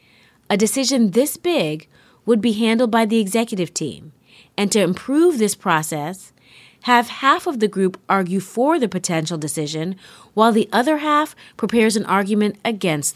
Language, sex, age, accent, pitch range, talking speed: English, female, 30-49, American, 165-235 Hz, 155 wpm